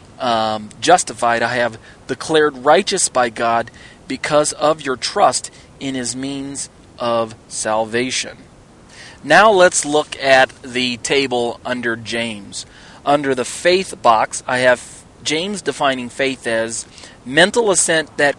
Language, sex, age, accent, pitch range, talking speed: English, male, 40-59, American, 120-145 Hz, 125 wpm